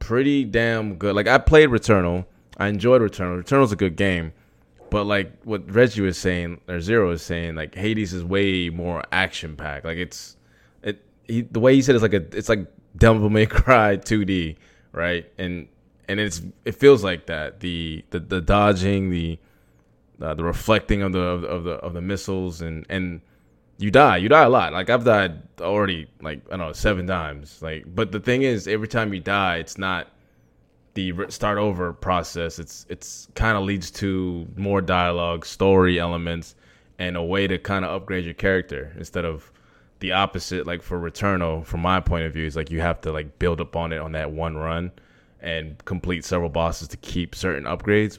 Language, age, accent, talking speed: English, 20-39, American, 195 wpm